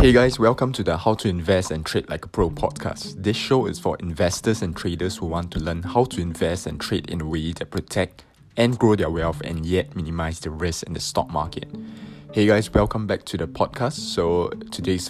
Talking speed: 225 wpm